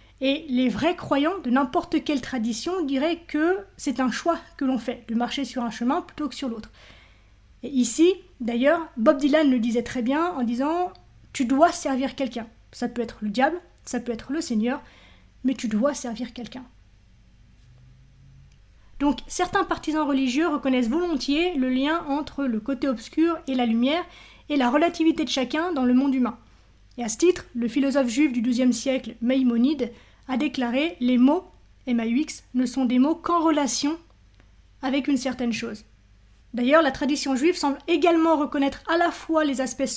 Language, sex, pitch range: French, female, 240-300 Hz